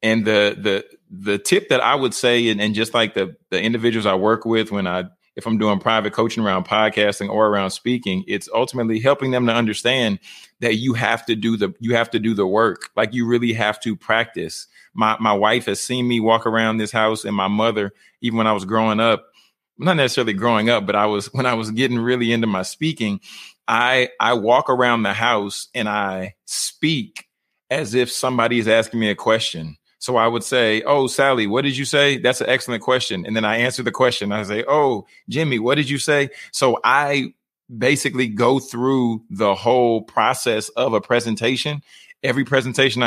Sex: male